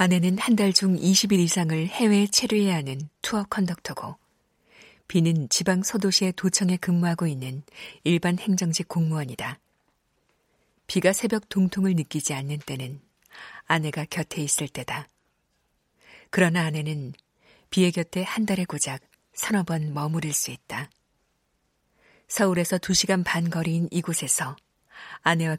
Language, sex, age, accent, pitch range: Korean, female, 50-69, native, 155-190 Hz